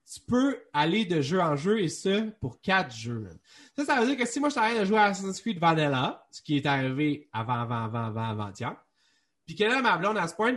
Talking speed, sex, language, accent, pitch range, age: 255 wpm, male, French, Canadian, 130-205 Hz, 30-49